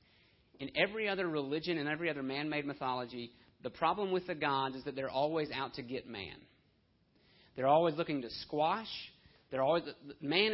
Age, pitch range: 40-59, 130-160 Hz